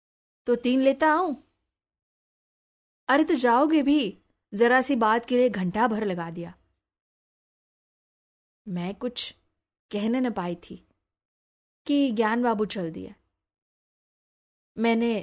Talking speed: 115 wpm